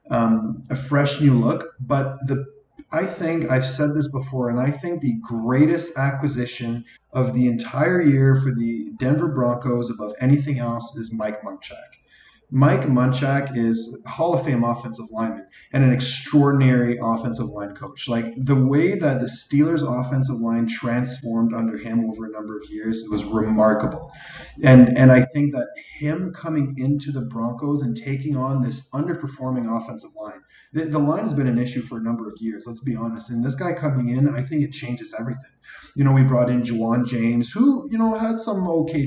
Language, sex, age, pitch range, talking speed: English, male, 30-49, 115-140 Hz, 185 wpm